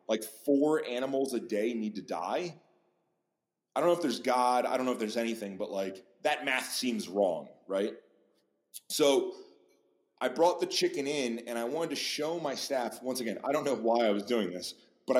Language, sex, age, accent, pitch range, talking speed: English, male, 20-39, American, 110-140 Hz, 200 wpm